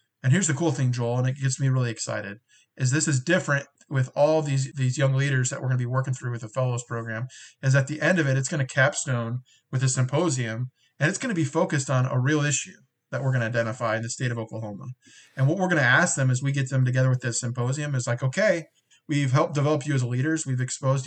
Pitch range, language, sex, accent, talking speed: 125-150 Hz, English, male, American, 260 wpm